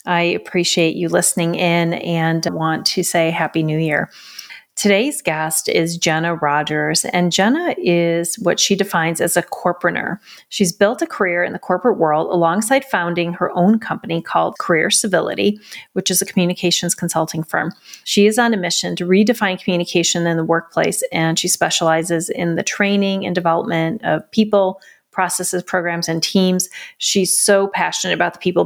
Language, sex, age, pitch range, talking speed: English, female, 30-49, 165-190 Hz, 165 wpm